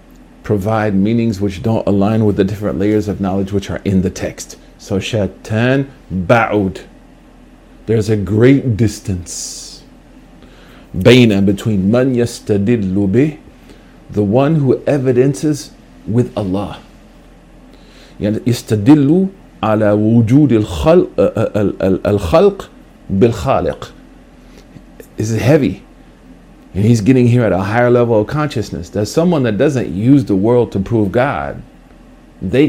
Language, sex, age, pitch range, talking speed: English, male, 50-69, 100-125 Hz, 110 wpm